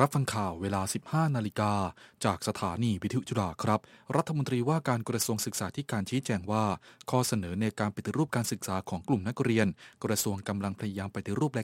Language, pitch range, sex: Thai, 105-130 Hz, male